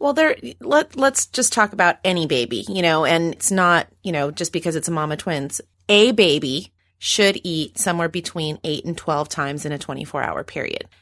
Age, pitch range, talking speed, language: 30-49, 165-220 Hz, 195 wpm, English